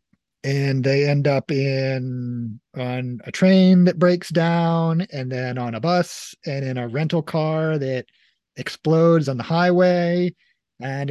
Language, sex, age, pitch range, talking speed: English, male, 30-49, 130-165 Hz, 145 wpm